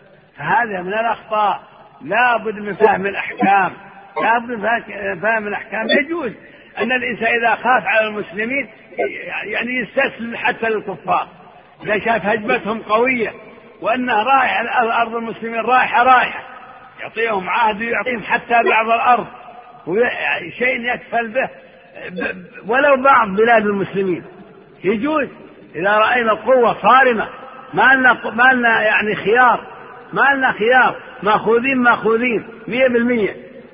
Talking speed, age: 115 wpm, 50-69